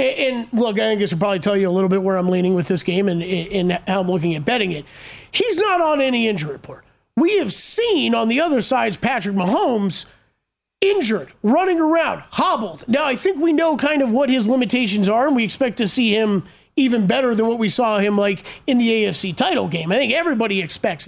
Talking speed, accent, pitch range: 220 wpm, American, 195-255 Hz